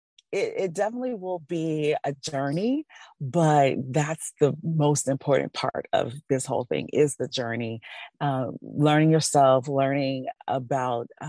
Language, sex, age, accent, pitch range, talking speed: English, female, 40-59, American, 135-170 Hz, 130 wpm